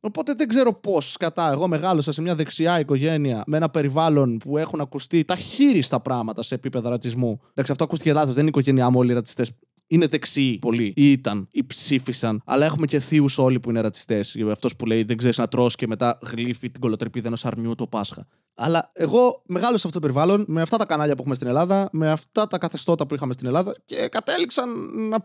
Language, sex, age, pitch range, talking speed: Greek, male, 20-39, 130-200 Hz, 215 wpm